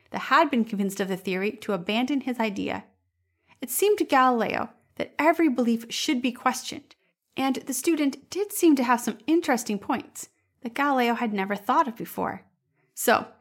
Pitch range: 205-280 Hz